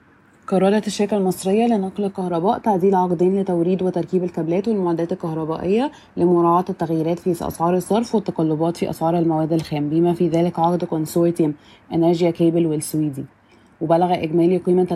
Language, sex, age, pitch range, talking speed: Arabic, female, 20-39, 170-185 Hz, 130 wpm